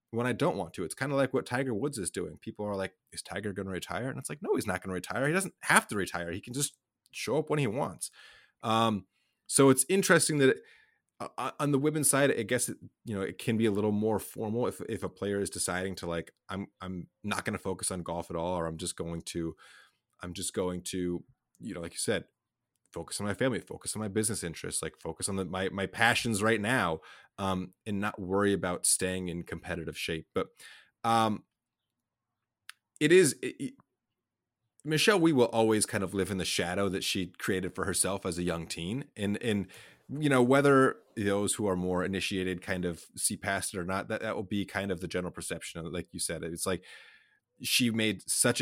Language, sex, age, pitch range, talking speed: English, male, 30-49, 90-120 Hz, 230 wpm